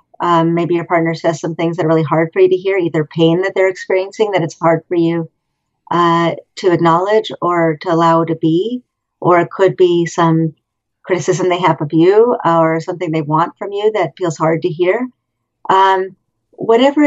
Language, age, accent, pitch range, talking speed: English, 50-69, American, 165-210 Hz, 195 wpm